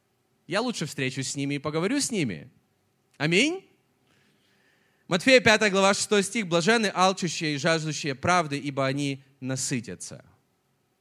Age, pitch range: 30-49, 135-185 Hz